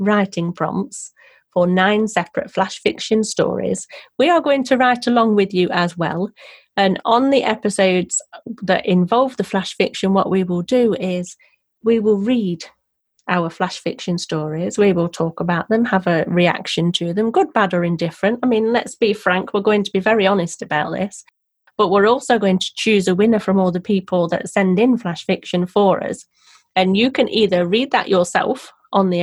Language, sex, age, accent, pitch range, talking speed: English, female, 30-49, British, 180-225 Hz, 195 wpm